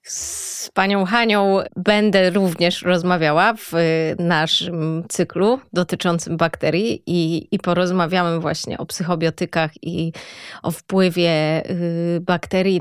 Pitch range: 170-210 Hz